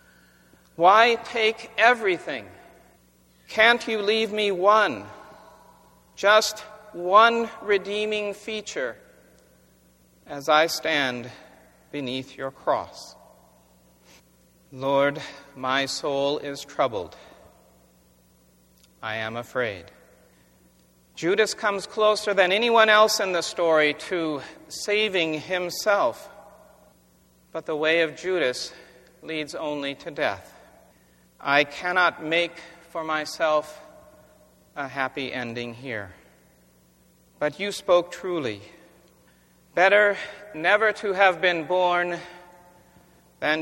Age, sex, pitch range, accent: 50-69, male, 145-205 Hz, American